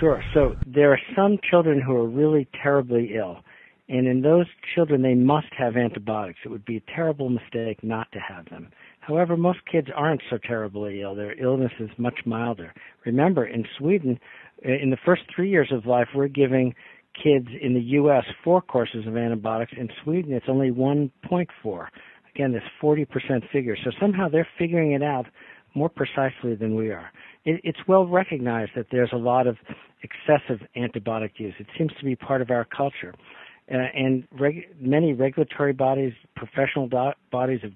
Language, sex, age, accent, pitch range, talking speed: English, male, 50-69, American, 120-150 Hz, 175 wpm